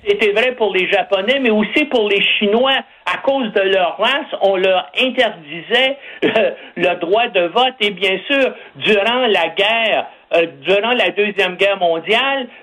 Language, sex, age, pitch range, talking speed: French, male, 60-79, 180-240 Hz, 165 wpm